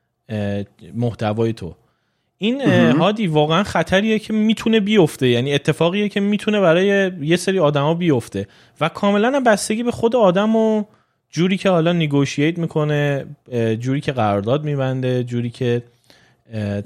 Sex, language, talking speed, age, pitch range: male, Persian, 130 wpm, 30-49, 115-170 Hz